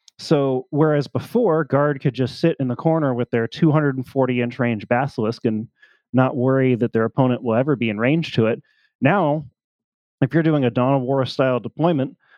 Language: English